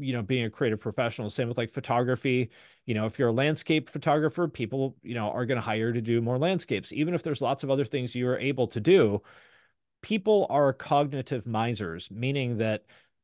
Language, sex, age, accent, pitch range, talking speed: English, male, 30-49, American, 115-145 Hz, 205 wpm